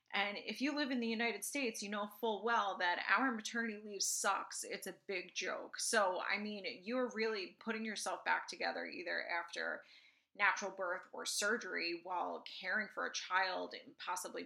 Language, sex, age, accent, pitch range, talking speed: English, female, 30-49, American, 190-245 Hz, 180 wpm